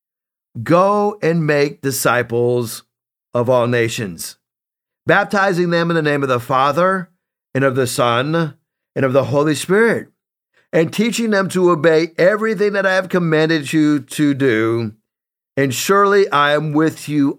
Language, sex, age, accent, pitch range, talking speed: English, male, 50-69, American, 145-185 Hz, 150 wpm